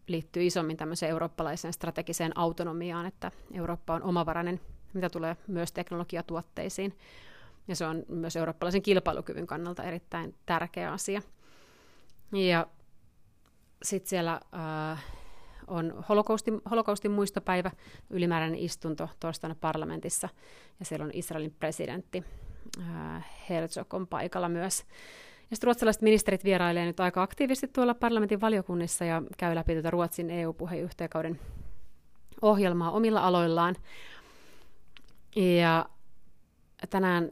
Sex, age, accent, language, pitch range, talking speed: female, 30-49, native, Finnish, 165-185 Hz, 100 wpm